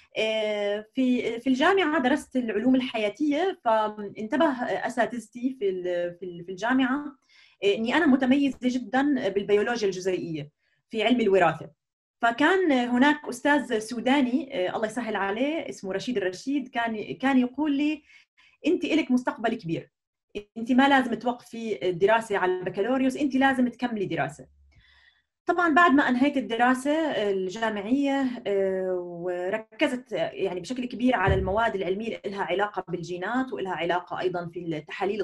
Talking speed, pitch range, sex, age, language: 120 wpm, 185-265 Hz, female, 30-49, Arabic